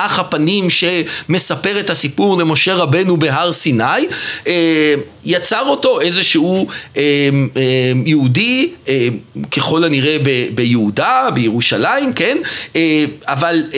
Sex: male